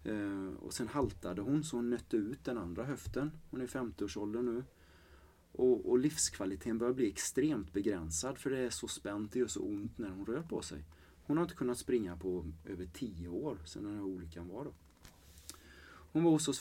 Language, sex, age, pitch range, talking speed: Swedish, male, 30-49, 90-135 Hz, 200 wpm